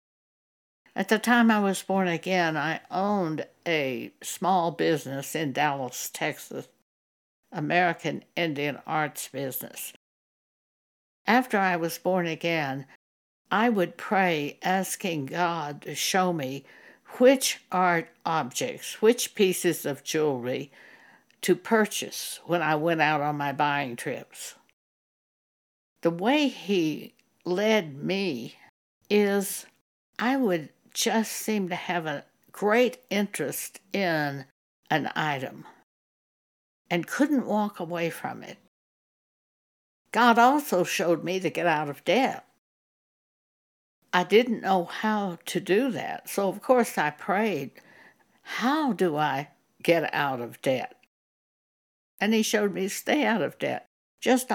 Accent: American